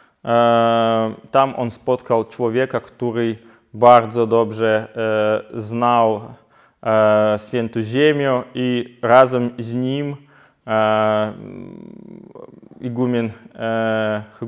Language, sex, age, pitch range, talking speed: Polish, male, 20-39, 110-125 Hz, 80 wpm